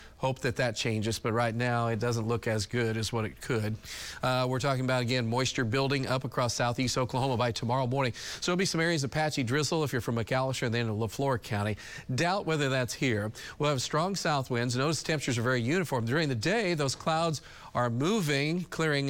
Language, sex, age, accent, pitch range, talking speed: English, male, 40-59, American, 120-140 Hz, 220 wpm